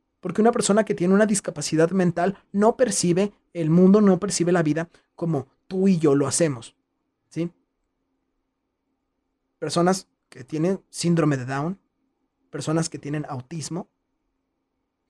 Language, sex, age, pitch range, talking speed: Spanish, male, 30-49, 150-190 Hz, 125 wpm